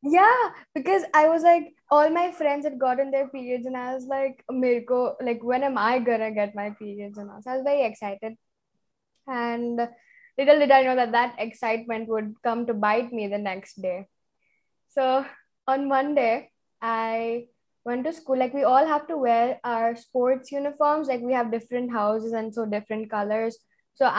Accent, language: Indian, English